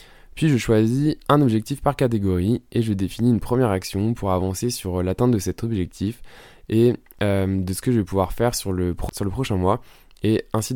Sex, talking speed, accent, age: male, 210 wpm, French, 20-39